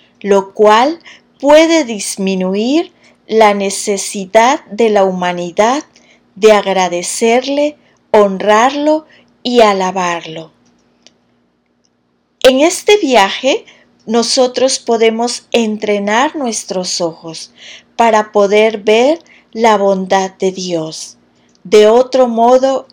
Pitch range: 185-250 Hz